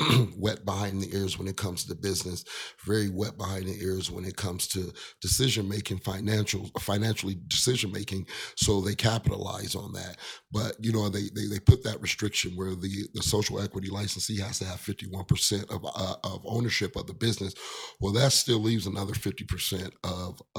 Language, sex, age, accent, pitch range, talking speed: English, male, 40-59, American, 95-110 Hz, 185 wpm